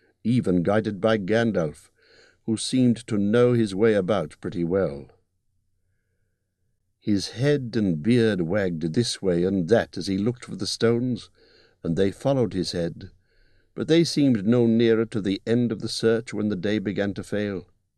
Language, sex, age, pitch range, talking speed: English, male, 60-79, 90-115 Hz, 165 wpm